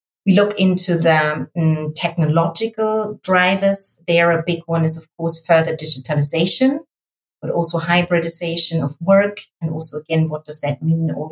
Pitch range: 155-180 Hz